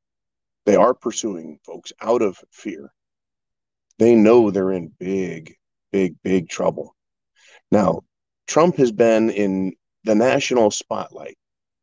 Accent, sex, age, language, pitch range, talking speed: American, male, 40-59, English, 95-125 Hz, 115 wpm